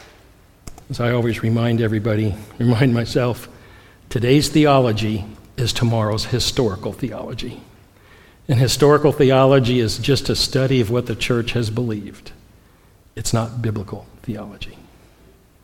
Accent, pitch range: American, 115-150 Hz